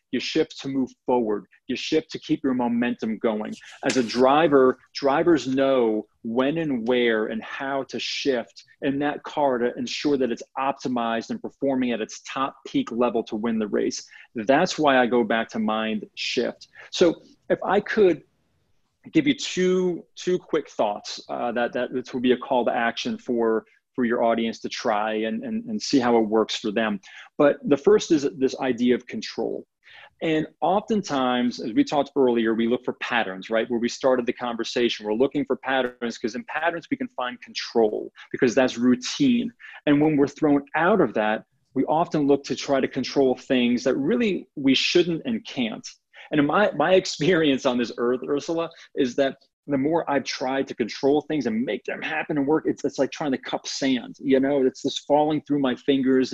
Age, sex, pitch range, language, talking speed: 30-49, male, 120-160 Hz, English, 195 wpm